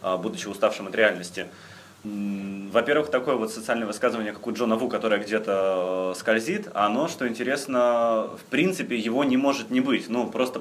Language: Russian